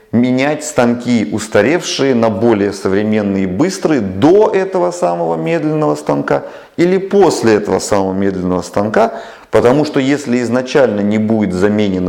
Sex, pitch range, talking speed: male, 95-140 Hz, 130 wpm